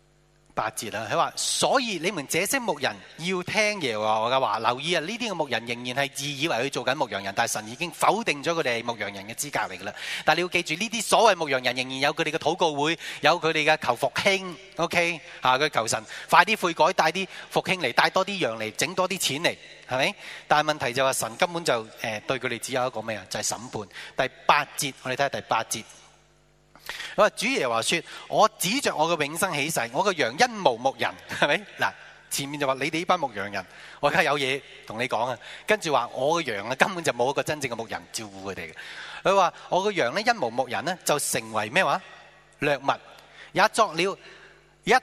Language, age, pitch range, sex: Chinese, 30-49, 120-175 Hz, male